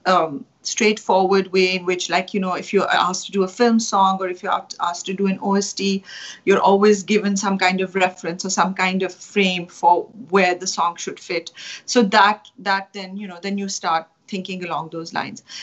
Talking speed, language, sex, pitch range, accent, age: 215 wpm, English, female, 180-215 Hz, Indian, 40-59